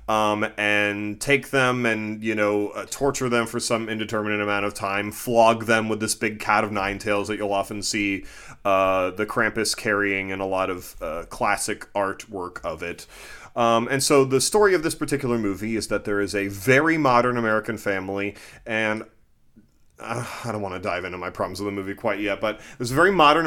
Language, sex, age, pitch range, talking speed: English, male, 30-49, 100-120 Hz, 200 wpm